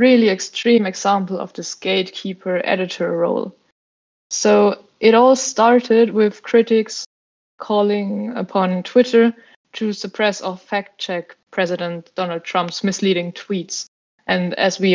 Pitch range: 185-225 Hz